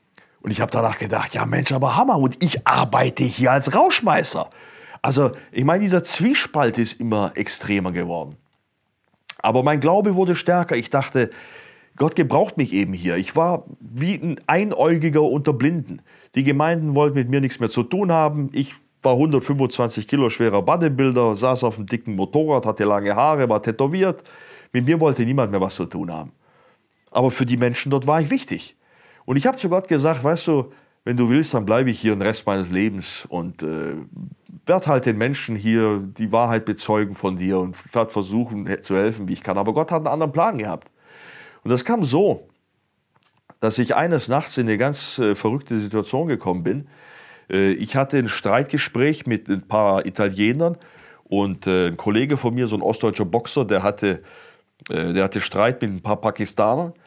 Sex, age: male, 40-59